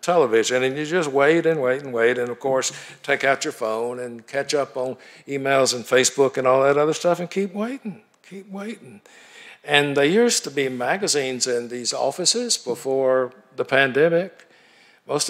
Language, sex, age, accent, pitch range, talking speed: English, male, 60-79, American, 125-170 Hz, 180 wpm